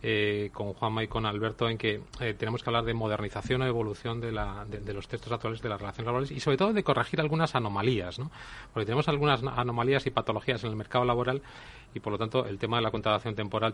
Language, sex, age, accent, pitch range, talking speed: Spanish, male, 30-49, Spanish, 110-130 Hz, 245 wpm